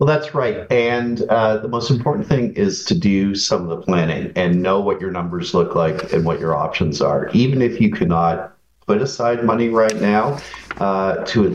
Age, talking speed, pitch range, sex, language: 40-59, 210 wpm, 85-120 Hz, male, English